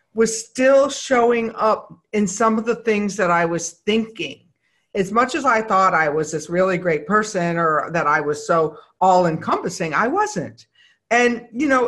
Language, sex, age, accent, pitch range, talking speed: English, female, 50-69, American, 180-230 Hz, 185 wpm